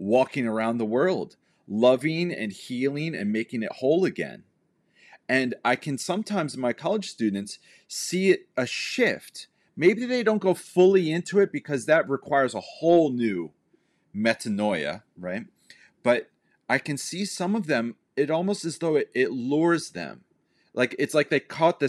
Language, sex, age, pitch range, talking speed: English, male, 30-49, 110-165 Hz, 160 wpm